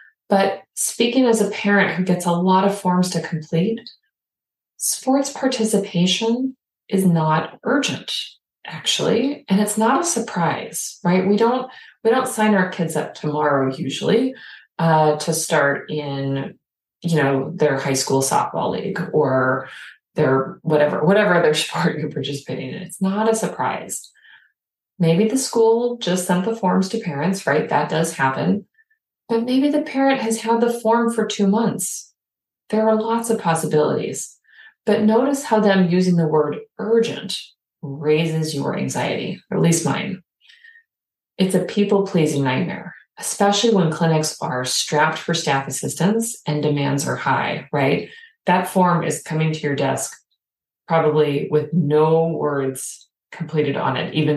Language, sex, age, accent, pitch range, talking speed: English, female, 30-49, American, 155-225 Hz, 150 wpm